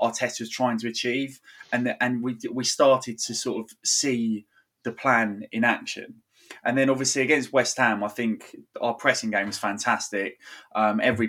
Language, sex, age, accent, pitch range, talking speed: English, male, 20-39, British, 110-125 Hz, 180 wpm